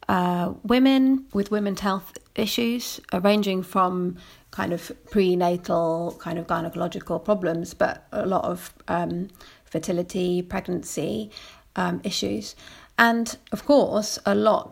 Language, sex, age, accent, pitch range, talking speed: English, female, 30-49, British, 180-220 Hz, 120 wpm